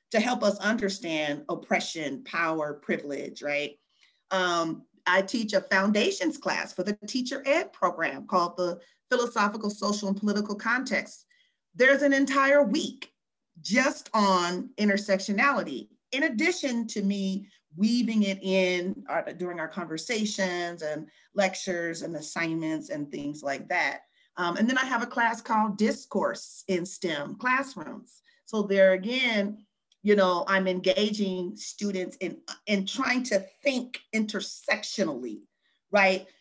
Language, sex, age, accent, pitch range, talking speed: English, female, 40-59, American, 180-245 Hz, 130 wpm